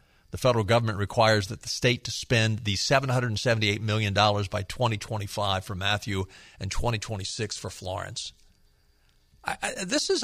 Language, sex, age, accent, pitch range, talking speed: English, male, 50-69, American, 100-155 Hz, 130 wpm